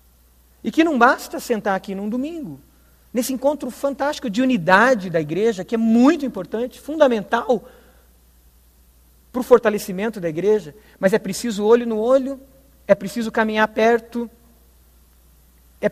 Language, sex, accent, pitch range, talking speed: Portuguese, male, Brazilian, 175-275 Hz, 135 wpm